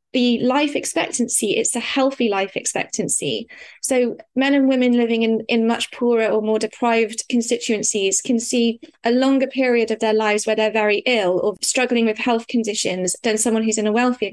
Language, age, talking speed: English, 20-39, 185 wpm